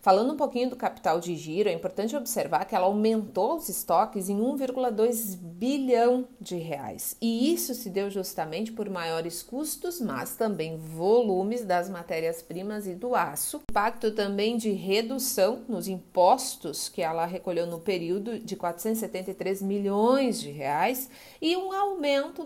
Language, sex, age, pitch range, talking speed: Portuguese, female, 40-59, 190-260 Hz, 145 wpm